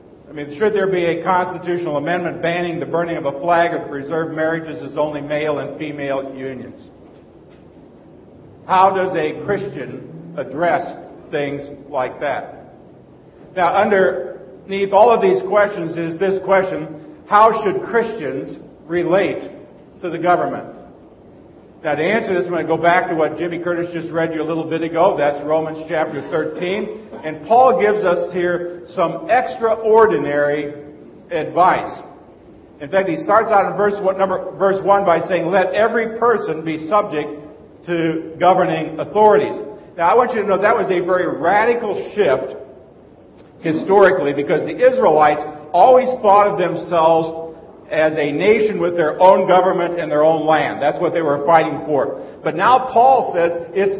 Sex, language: male, English